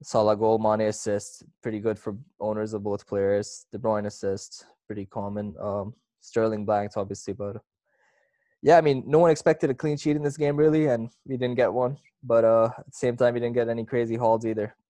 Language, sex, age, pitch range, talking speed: English, male, 20-39, 110-130 Hz, 210 wpm